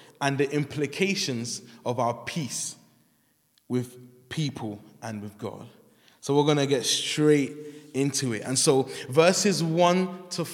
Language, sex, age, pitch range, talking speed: English, male, 20-39, 135-170 Hz, 135 wpm